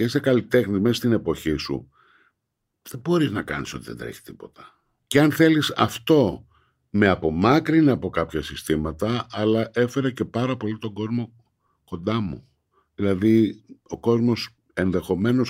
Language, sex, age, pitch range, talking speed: Greek, male, 60-79, 100-130 Hz, 140 wpm